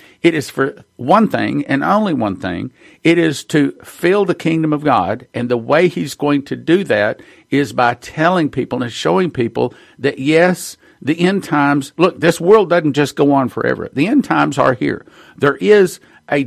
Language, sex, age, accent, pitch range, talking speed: English, male, 50-69, American, 135-170 Hz, 195 wpm